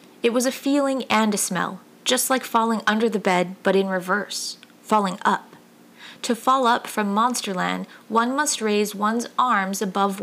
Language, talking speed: English, 170 wpm